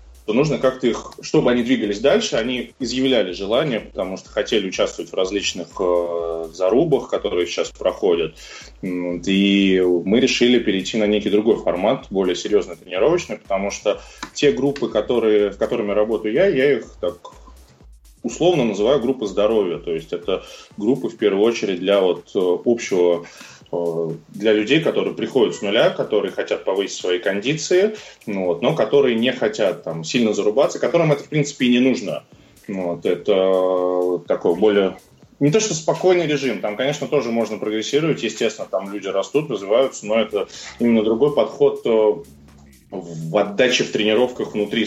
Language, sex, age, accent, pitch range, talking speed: Russian, male, 20-39, native, 90-140 Hz, 145 wpm